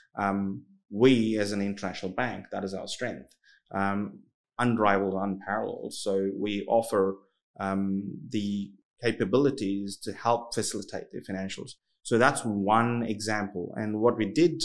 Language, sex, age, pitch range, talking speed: English, male, 30-49, 95-115 Hz, 130 wpm